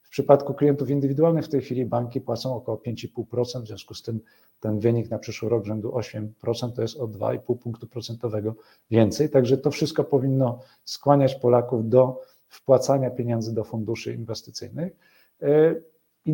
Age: 40-59